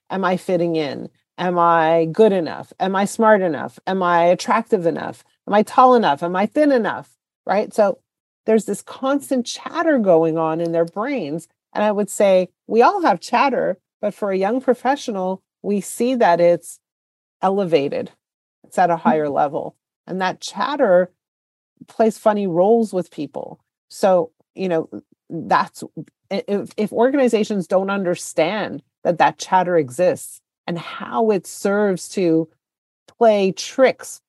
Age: 40-59